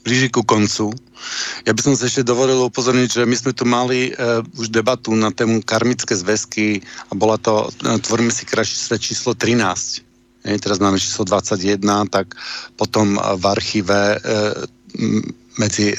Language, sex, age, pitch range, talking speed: Czech, male, 50-69, 105-120 Hz, 155 wpm